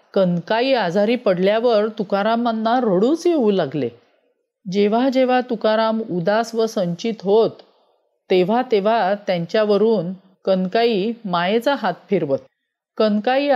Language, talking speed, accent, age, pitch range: Marathi, 95 wpm, native, 40-59, 195-245 Hz